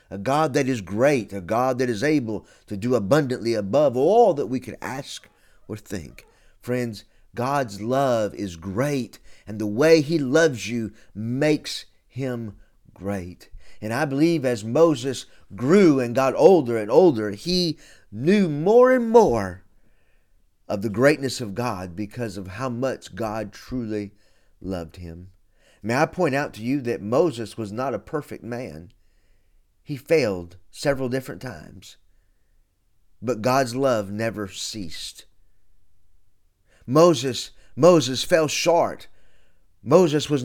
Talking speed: 140 wpm